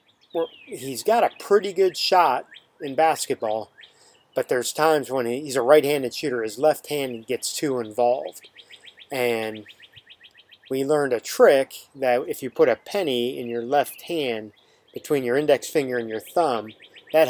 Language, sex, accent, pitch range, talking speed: English, male, American, 115-150 Hz, 165 wpm